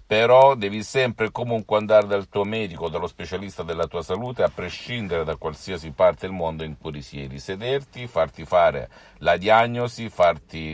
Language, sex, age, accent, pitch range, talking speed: Italian, male, 50-69, native, 85-110 Hz, 170 wpm